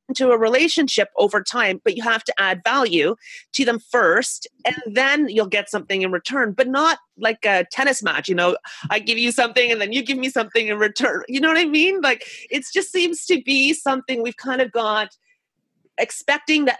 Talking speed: 210 wpm